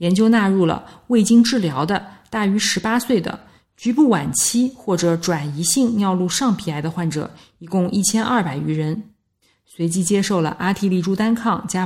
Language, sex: Chinese, female